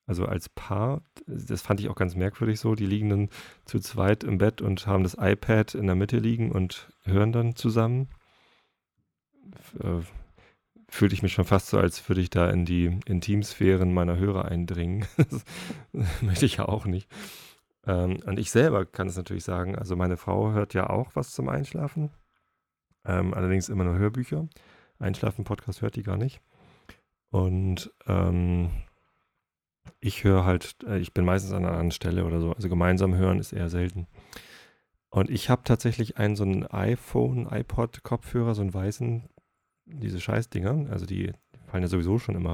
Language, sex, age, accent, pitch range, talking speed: German, male, 30-49, German, 90-110 Hz, 170 wpm